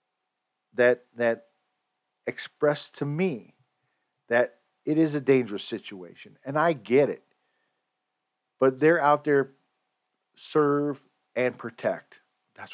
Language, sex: English, male